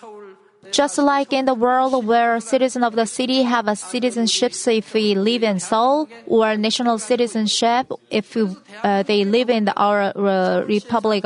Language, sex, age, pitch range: Korean, female, 30-49, 205-260 Hz